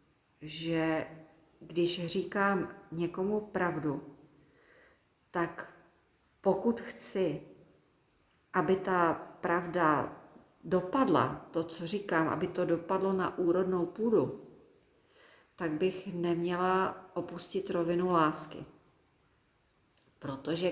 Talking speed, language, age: 80 wpm, Czech, 40-59